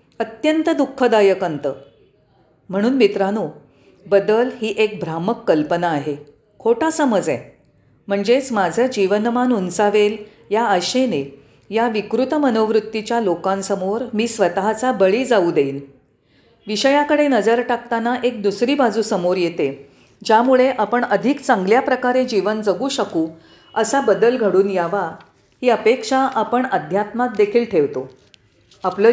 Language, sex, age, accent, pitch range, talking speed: Marathi, female, 40-59, native, 175-240 Hz, 115 wpm